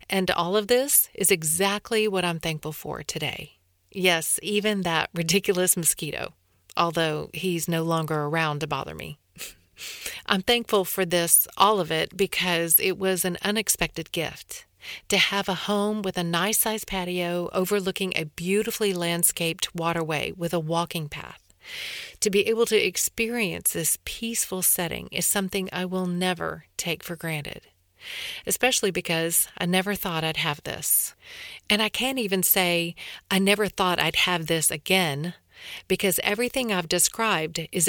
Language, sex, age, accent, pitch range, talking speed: English, female, 40-59, American, 165-205 Hz, 150 wpm